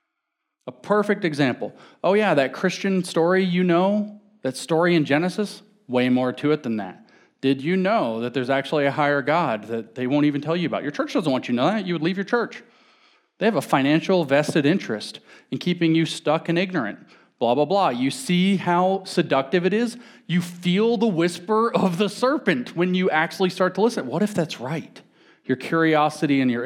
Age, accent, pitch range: 40-59, American, 130-175 Hz